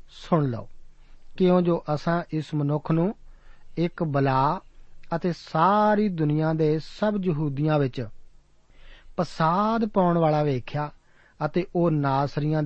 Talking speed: 115 wpm